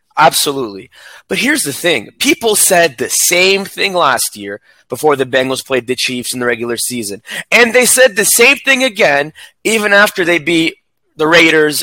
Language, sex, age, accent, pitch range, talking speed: English, male, 20-39, American, 145-230 Hz, 180 wpm